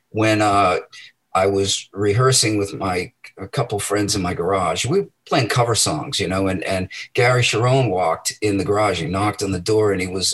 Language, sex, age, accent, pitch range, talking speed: English, male, 40-59, American, 100-125 Hz, 210 wpm